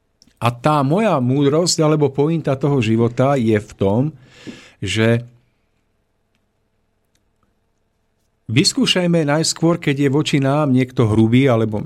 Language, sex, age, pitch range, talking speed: Slovak, male, 50-69, 120-180 Hz, 105 wpm